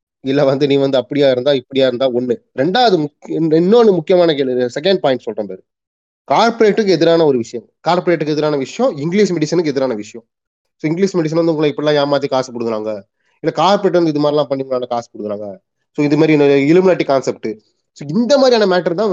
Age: 30-49